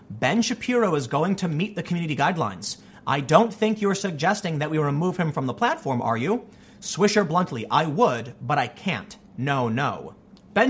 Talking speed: 185 wpm